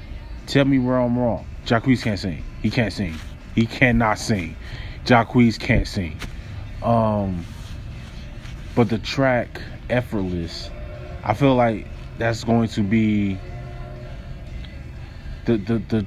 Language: English